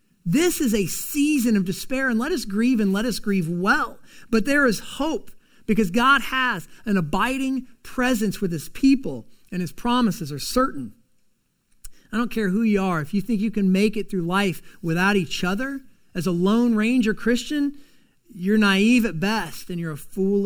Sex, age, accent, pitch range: male, 40-59, American, 175-245 Hz